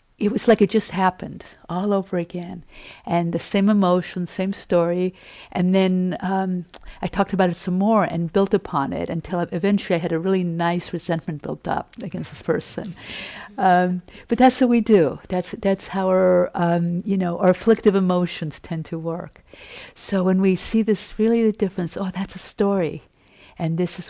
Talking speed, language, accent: 185 wpm, English, American